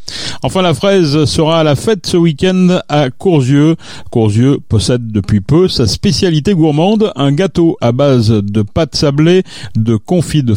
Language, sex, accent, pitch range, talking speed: French, male, French, 110-145 Hz, 160 wpm